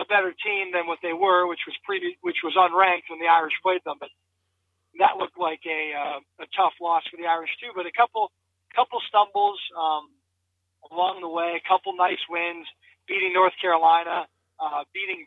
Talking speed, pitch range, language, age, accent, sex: 195 wpm, 155-190 Hz, English, 20-39, American, male